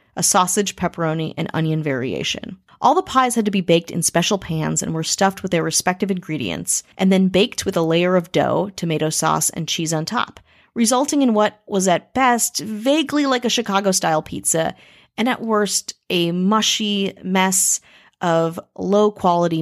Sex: female